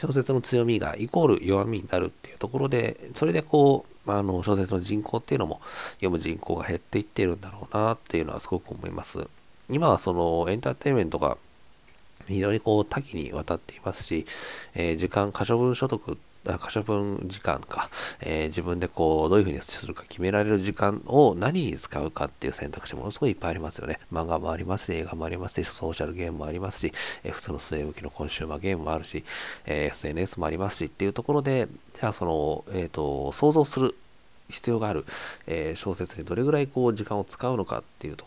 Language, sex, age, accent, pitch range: Japanese, male, 40-59, native, 85-120 Hz